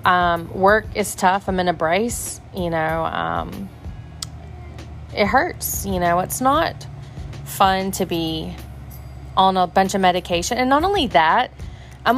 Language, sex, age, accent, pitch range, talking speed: English, female, 30-49, American, 170-210 Hz, 150 wpm